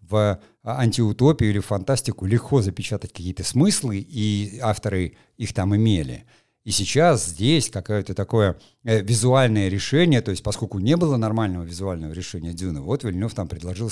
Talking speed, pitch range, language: 150 wpm, 100-130 Hz, Russian